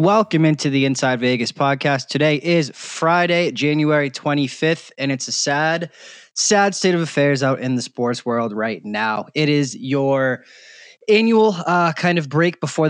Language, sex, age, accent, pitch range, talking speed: English, male, 20-39, American, 135-170 Hz, 165 wpm